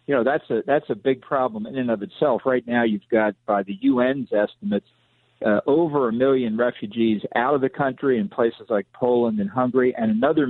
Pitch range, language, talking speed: 110-130 Hz, English, 210 wpm